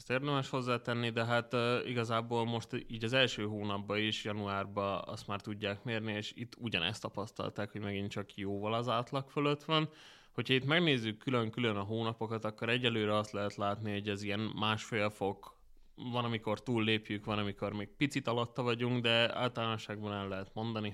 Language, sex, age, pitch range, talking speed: Hungarian, male, 20-39, 105-120 Hz, 175 wpm